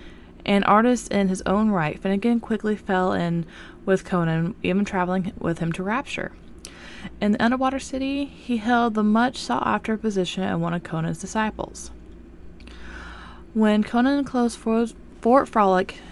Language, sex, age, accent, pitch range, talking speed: English, female, 20-39, American, 180-220 Hz, 150 wpm